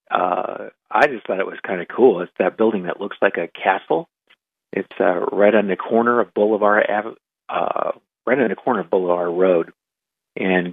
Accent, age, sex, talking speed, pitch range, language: American, 40-59, male, 190 wpm, 95-115 Hz, English